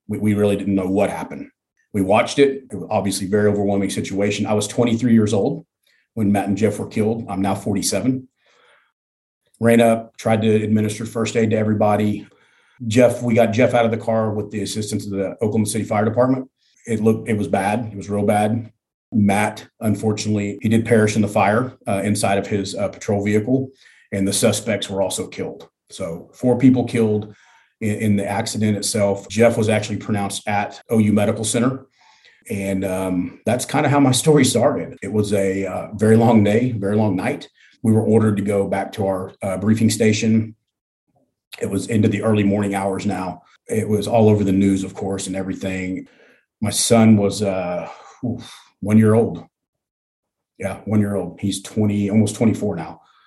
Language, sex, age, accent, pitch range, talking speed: English, male, 40-59, American, 100-110 Hz, 180 wpm